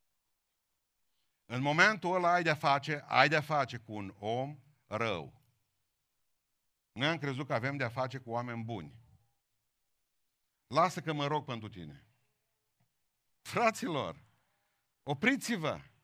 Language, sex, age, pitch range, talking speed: Romanian, male, 50-69, 115-160 Hz, 115 wpm